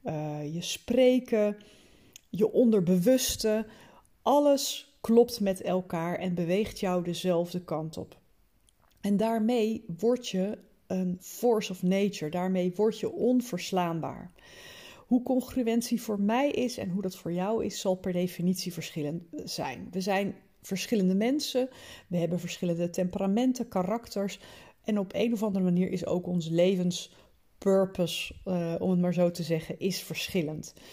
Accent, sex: Dutch, female